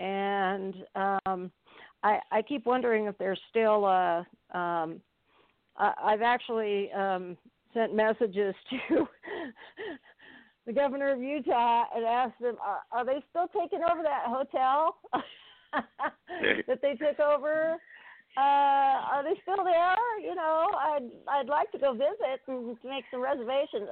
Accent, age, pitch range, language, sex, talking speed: American, 50-69, 195-280 Hz, English, female, 140 wpm